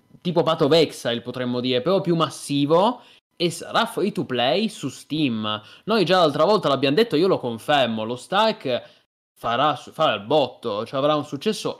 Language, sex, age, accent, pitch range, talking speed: Italian, male, 20-39, native, 125-165 Hz, 175 wpm